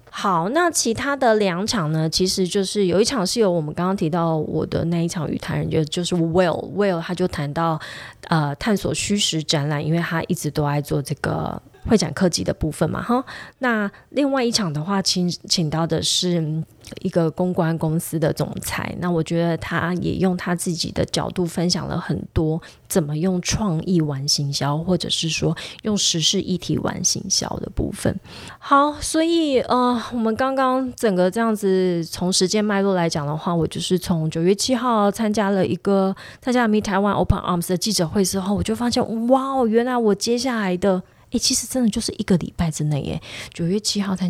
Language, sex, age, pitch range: Chinese, female, 20-39, 165-210 Hz